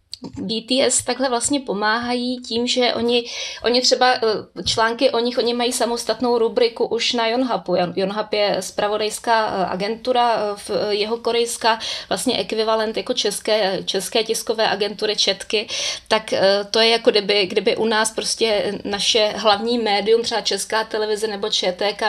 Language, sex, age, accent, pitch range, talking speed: Czech, female, 20-39, native, 200-230 Hz, 135 wpm